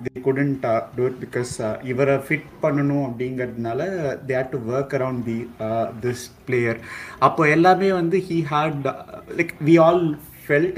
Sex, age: male, 20-39